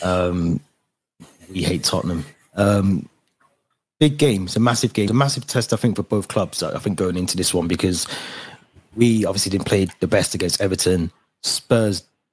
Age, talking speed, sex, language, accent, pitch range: 20-39, 175 wpm, male, English, British, 90-105 Hz